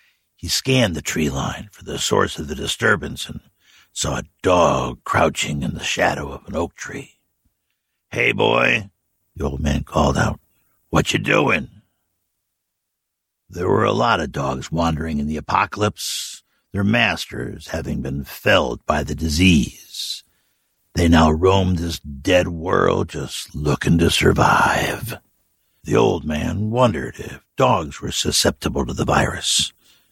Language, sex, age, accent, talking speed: English, male, 60-79, American, 145 wpm